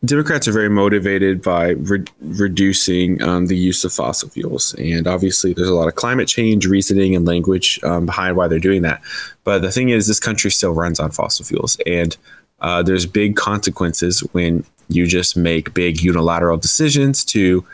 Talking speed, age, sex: 185 wpm, 20-39, male